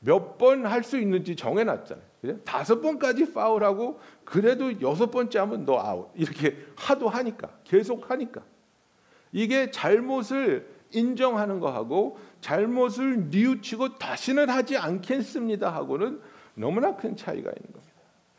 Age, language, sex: 60-79, Korean, male